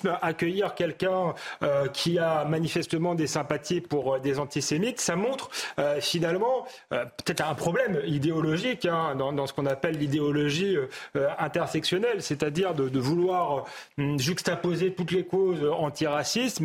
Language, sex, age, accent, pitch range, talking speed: French, male, 40-59, French, 155-195 Hz, 135 wpm